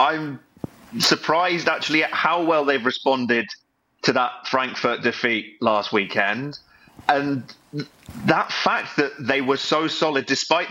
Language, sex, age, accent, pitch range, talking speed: English, male, 30-49, British, 125-155 Hz, 130 wpm